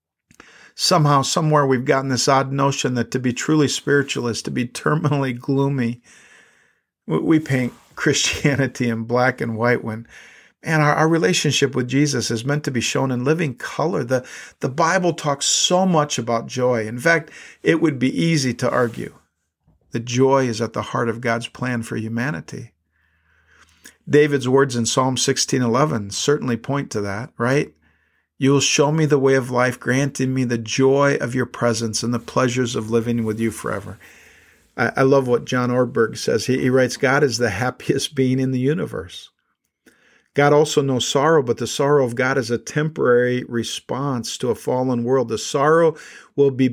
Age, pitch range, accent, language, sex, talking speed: 50-69, 115-140 Hz, American, English, male, 175 wpm